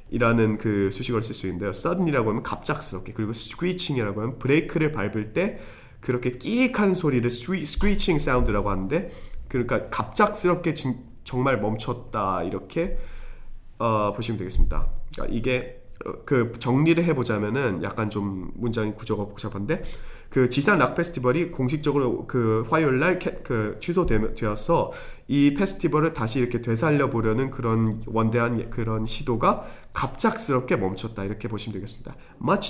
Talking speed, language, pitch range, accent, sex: 115 wpm, English, 110-145 Hz, Korean, male